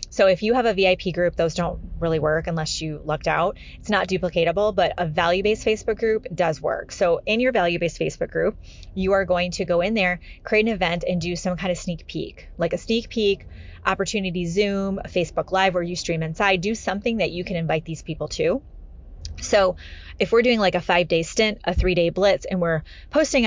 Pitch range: 170-200 Hz